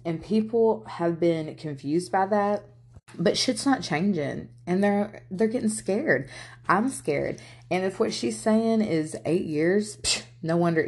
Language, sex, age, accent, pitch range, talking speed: English, female, 20-39, American, 120-180 Hz, 160 wpm